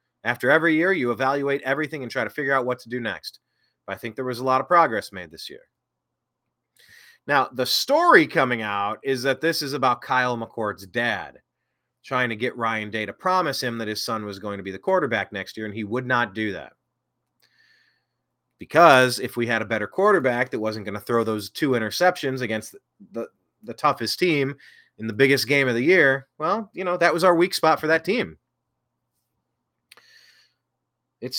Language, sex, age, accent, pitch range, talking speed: English, male, 30-49, American, 110-170 Hz, 200 wpm